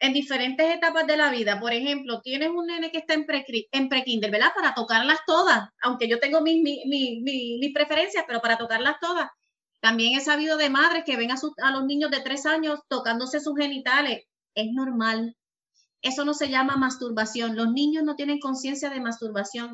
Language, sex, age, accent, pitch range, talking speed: Spanish, female, 30-49, American, 245-315 Hz, 200 wpm